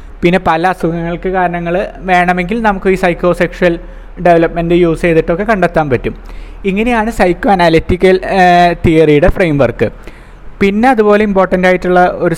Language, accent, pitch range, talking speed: Malayalam, native, 165-190 Hz, 120 wpm